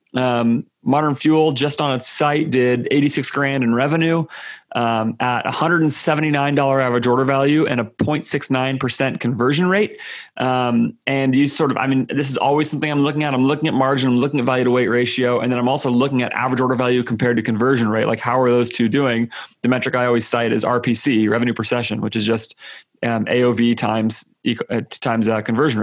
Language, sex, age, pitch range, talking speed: English, male, 30-49, 120-145 Hz, 200 wpm